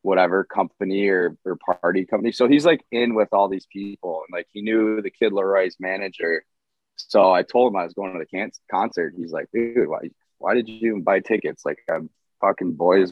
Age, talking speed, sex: 20-39, 205 wpm, male